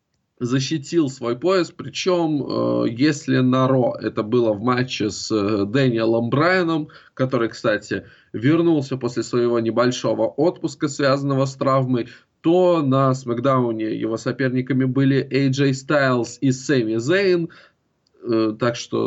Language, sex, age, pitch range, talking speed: Russian, male, 20-39, 115-145 Hz, 125 wpm